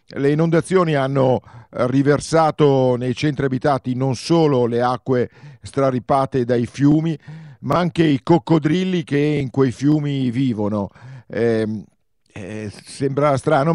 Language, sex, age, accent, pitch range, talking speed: Italian, male, 50-69, native, 125-150 Hz, 120 wpm